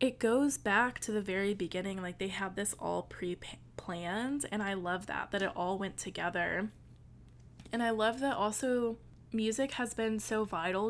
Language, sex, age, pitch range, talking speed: English, female, 20-39, 180-215 Hz, 175 wpm